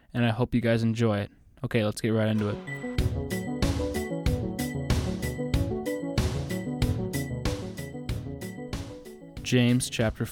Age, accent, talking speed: 20-39, American, 85 wpm